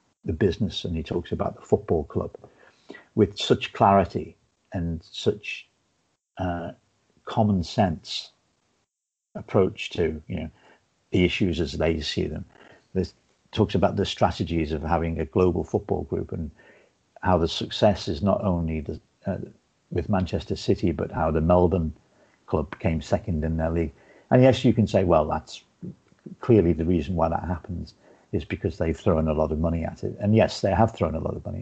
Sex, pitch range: male, 85-100 Hz